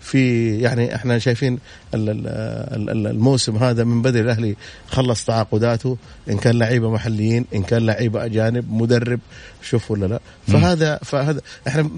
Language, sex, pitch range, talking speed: Arabic, male, 110-130 Hz, 130 wpm